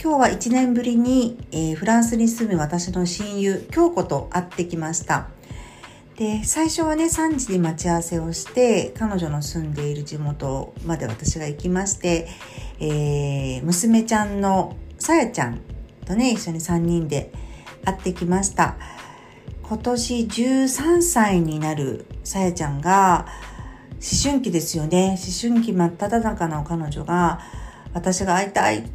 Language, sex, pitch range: Japanese, female, 160-230 Hz